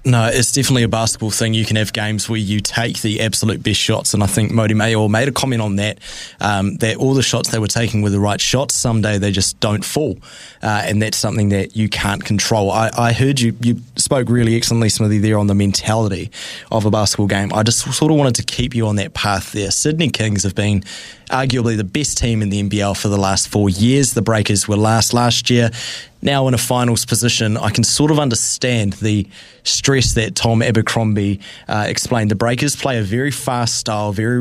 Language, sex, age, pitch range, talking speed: English, male, 20-39, 105-120 Hz, 225 wpm